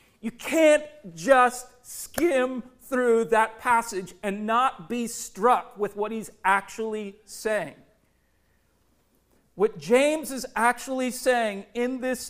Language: English